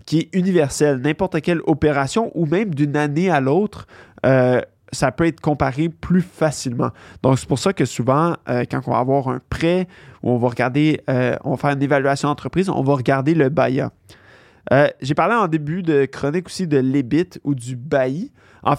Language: French